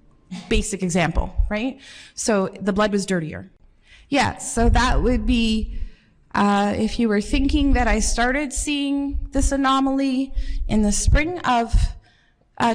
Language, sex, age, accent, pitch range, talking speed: French, female, 30-49, American, 195-240 Hz, 135 wpm